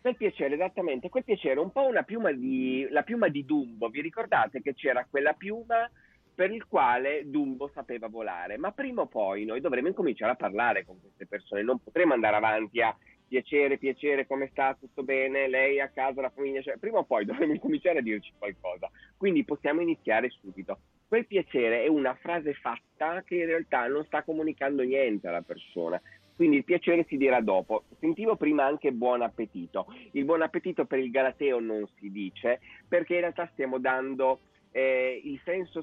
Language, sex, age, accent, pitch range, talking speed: Italian, male, 30-49, native, 120-170 Hz, 185 wpm